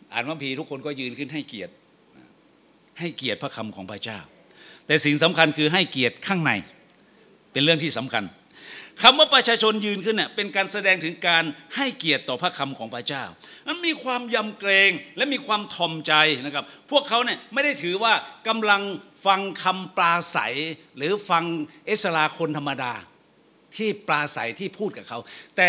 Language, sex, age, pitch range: Thai, male, 60-79, 160-235 Hz